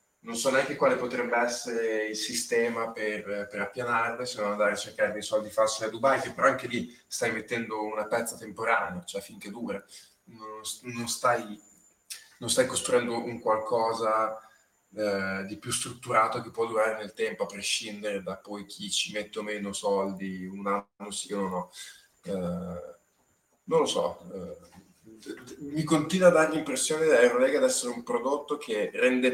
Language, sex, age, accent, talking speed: Italian, male, 20-39, native, 170 wpm